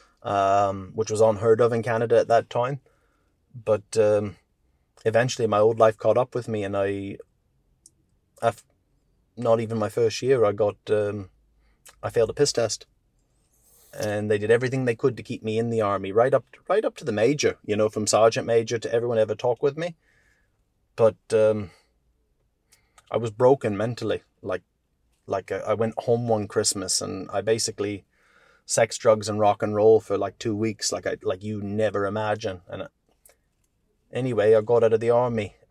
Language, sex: English, male